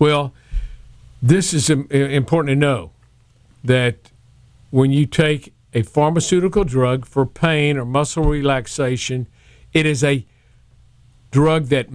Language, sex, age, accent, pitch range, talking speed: English, male, 50-69, American, 125-165 Hz, 115 wpm